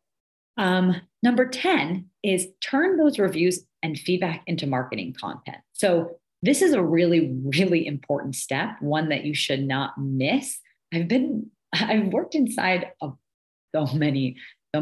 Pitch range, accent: 140-185 Hz, American